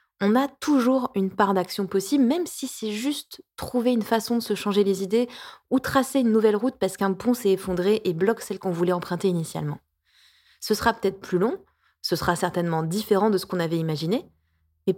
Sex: female